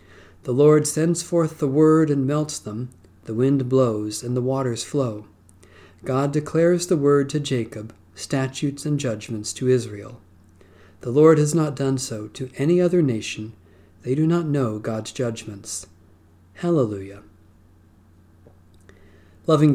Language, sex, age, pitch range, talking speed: English, male, 50-69, 100-150 Hz, 135 wpm